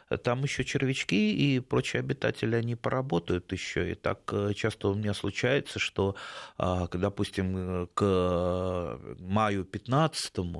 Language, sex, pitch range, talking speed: Russian, male, 90-130 Hz, 115 wpm